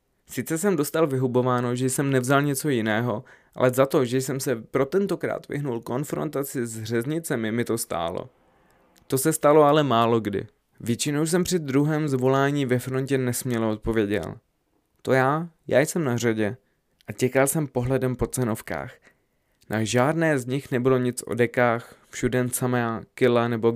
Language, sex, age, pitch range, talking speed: Czech, male, 20-39, 120-140 Hz, 160 wpm